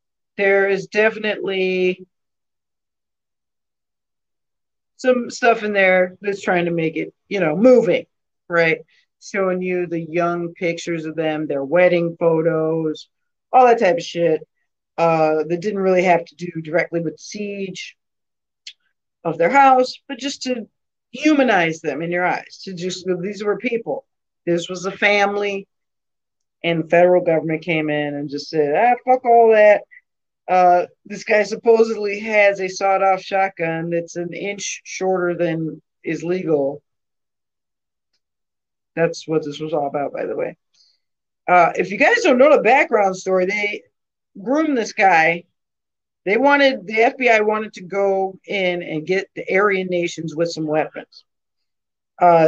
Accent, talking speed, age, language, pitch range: American, 145 wpm, 50-69, English, 165-205 Hz